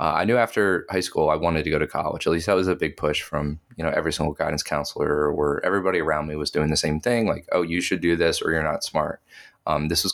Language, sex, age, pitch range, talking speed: English, male, 20-39, 80-95 Hz, 290 wpm